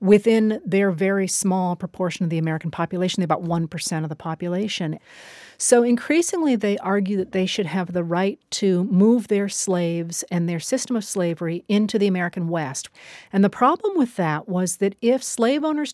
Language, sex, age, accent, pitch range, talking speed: English, female, 40-59, American, 175-220 Hz, 175 wpm